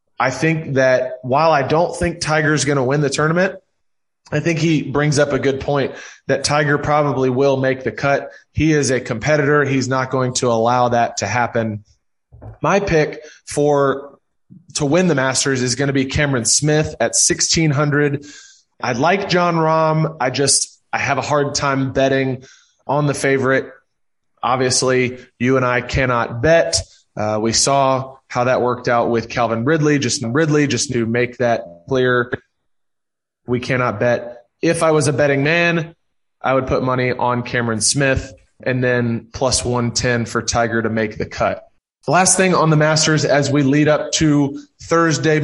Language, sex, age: English, male, 20-39